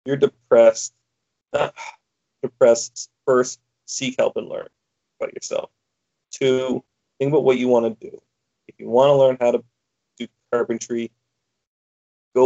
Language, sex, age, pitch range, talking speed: English, male, 30-49, 115-125 Hz, 135 wpm